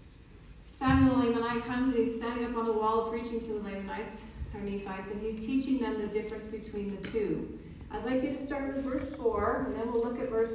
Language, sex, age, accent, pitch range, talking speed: English, female, 40-59, American, 205-240 Hz, 230 wpm